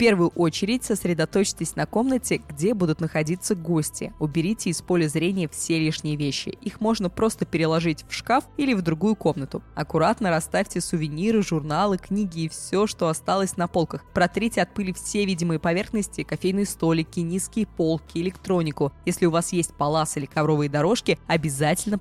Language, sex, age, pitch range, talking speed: Russian, female, 20-39, 155-195 Hz, 160 wpm